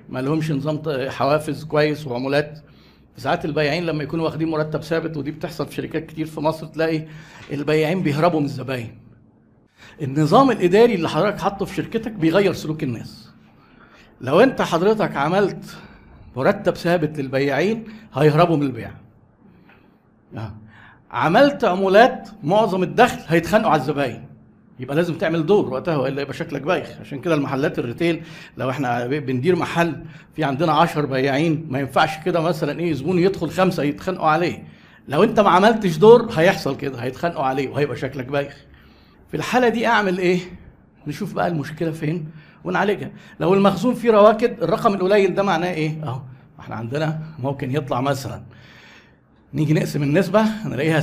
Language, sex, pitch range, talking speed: Arabic, male, 140-185 Hz, 145 wpm